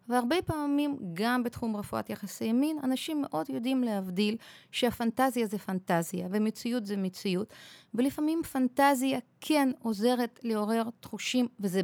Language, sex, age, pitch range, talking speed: Hebrew, female, 30-49, 185-240 Hz, 120 wpm